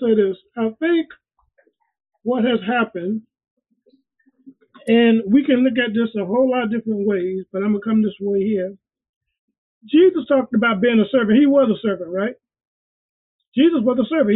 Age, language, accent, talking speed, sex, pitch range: 40-59, English, American, 175 wpm, male, 225-285 Hz